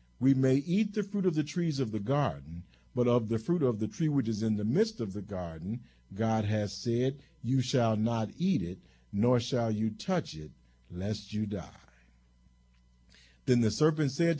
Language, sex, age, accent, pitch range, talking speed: English, male, 50-69, American, 95-135 Hz, 190 wpm